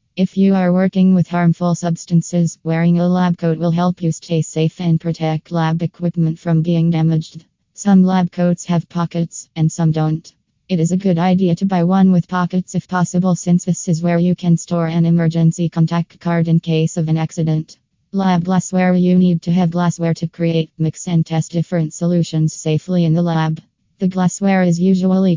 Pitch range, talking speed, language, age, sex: 165-180 Hz, 190 wpm, English, 20-39, female